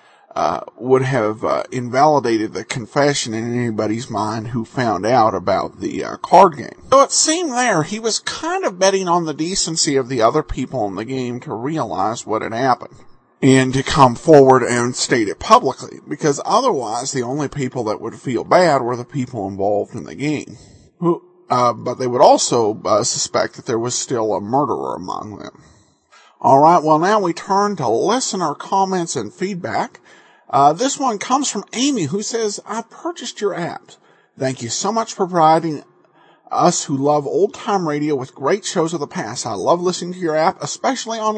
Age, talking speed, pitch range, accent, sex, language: 50-69, 190 wpm, 130-205 Hz, American, male, English